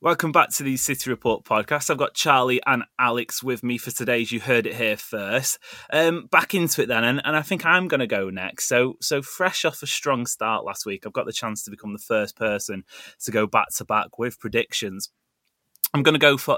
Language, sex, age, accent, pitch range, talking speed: English, male, 20-39, British, 110-135 Hz, 240 wpm